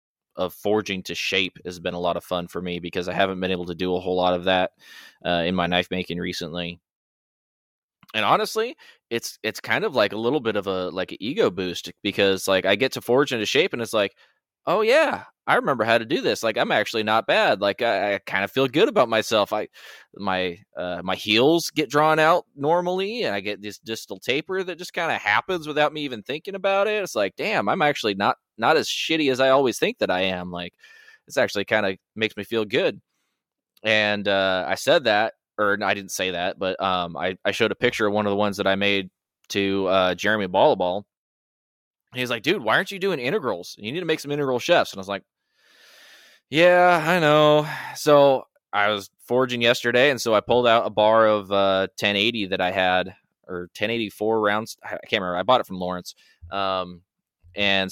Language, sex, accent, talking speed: English, male, American, 220 wpm